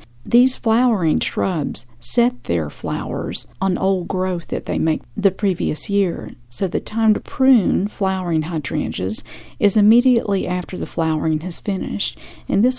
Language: English